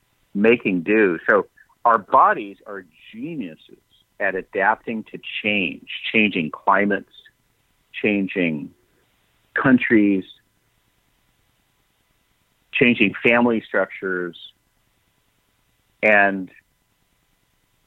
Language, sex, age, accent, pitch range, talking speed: English, male, 50-69, American, 100-120 Hz, 65 wpm